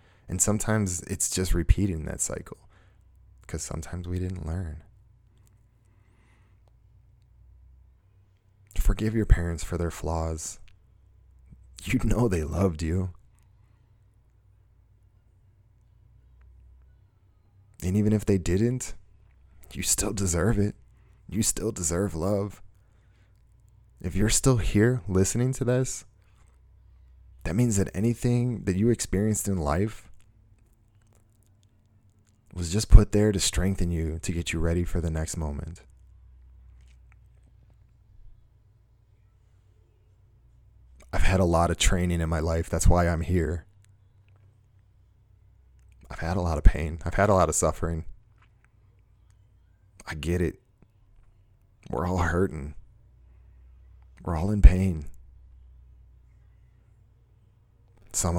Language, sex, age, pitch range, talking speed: English, male, 20-39, 85-105 Hz, 105 wpm